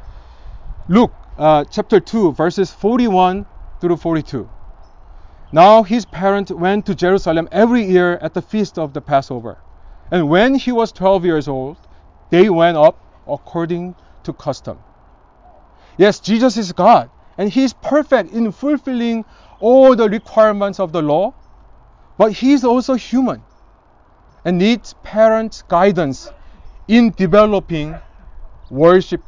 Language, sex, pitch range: Korean, male, 140-215 Hz